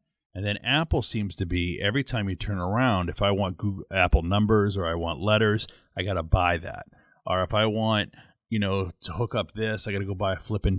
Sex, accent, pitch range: male, American, 95-115 Hz